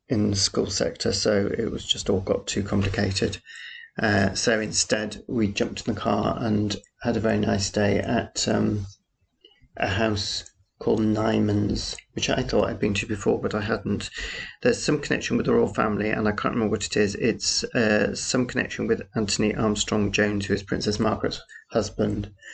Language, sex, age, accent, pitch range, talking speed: English, male, 40-59, British, 105-120 Hz, 185 wpm